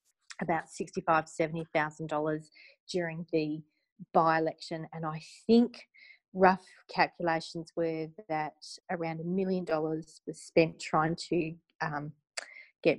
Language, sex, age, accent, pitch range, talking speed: English, female, 30-49, Australian, 170-205 Hz, 115 wpm